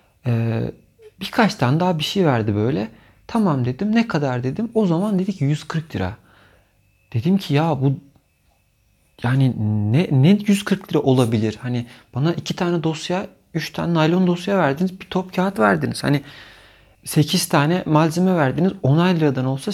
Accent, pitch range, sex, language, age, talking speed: native, 115-160 Hz, male, Turkish, 40-59, 155 wpm